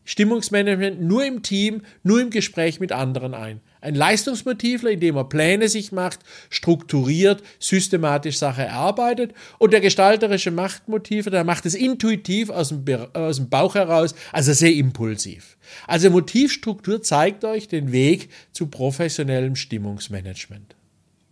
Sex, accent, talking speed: male, German, 125 wpm